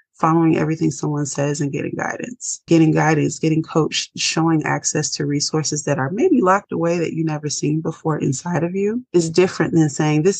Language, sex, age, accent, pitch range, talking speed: English, female, 20-39, American, 150-190 Hz, 190 wpm